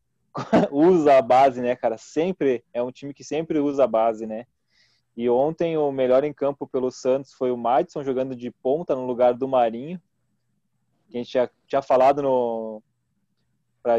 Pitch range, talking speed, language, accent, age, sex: 120-140 Hz, 175 wpm, Portuguese, Brazilian, 20-39, male